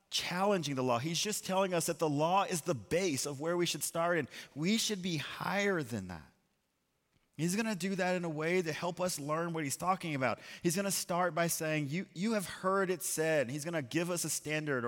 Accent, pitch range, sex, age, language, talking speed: American, 155-190 Hz, male, 30-49, English, 240 wpm